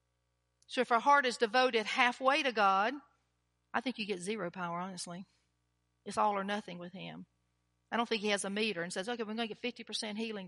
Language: English